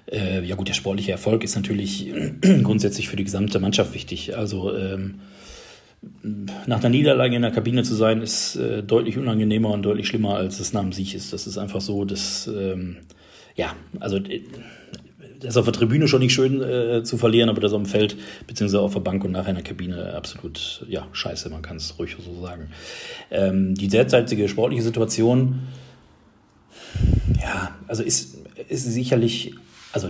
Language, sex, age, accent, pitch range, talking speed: German, male, 40-59, German, 95-115 Hz, 175 wpm